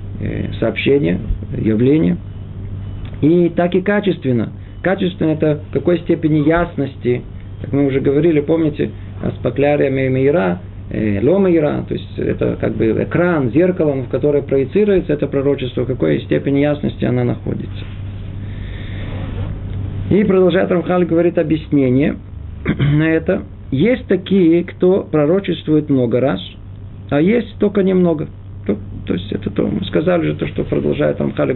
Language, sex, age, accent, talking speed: Russian, male, 40-59, native, 125 wpm